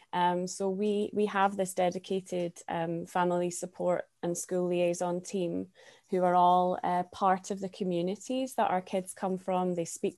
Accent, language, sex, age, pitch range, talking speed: British, English, female, 20-39, 175-195 Hz, 170 wpm